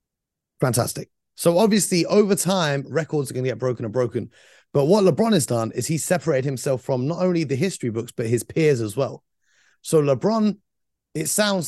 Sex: male